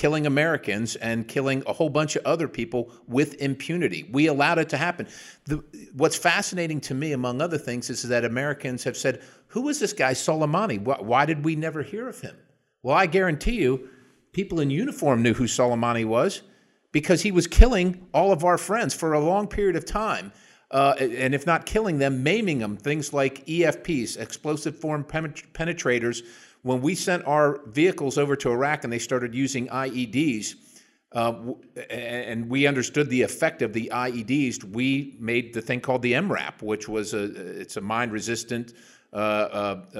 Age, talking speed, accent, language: 50-69, 180 wpm, American, English